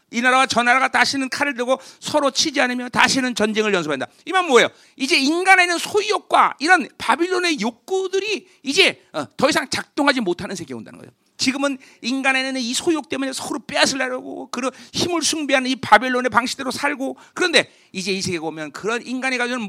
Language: Korean